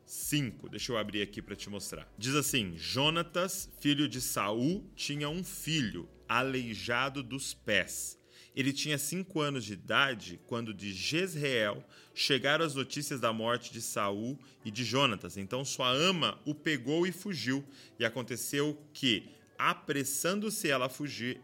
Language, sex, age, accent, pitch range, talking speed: Portuguese, male, 30-49, Brazilian, 115-150 Hz, 150 wpm